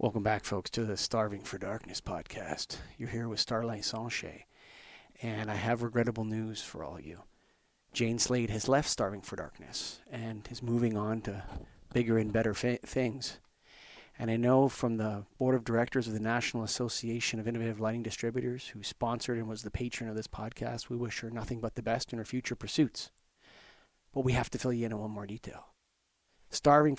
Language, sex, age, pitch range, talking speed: English, male, 40-59, 110-125 Hz, 195 wpm